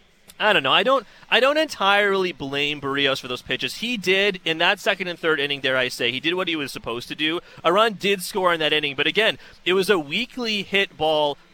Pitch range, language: 140-195 Hz, English